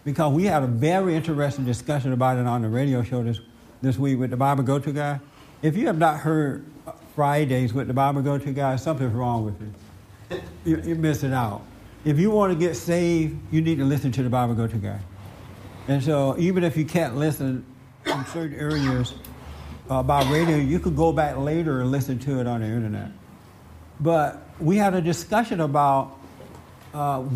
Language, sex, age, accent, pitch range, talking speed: English, male, 60-79, American, 130-160 Hz, 190 wpm